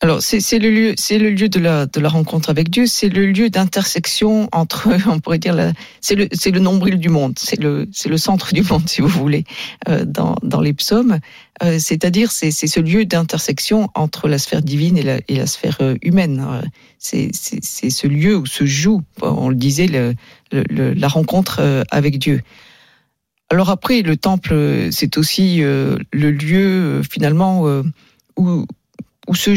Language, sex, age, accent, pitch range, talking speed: French, female, 50-69, French, 150-195 Hz, 190 wpm